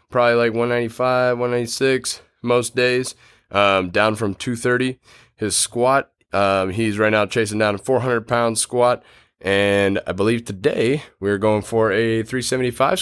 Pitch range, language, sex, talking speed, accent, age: 95-120 Hz, English, male, 140 wpm, American, 20-39